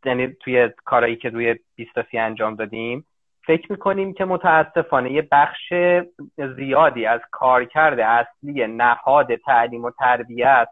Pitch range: 125-160 Hz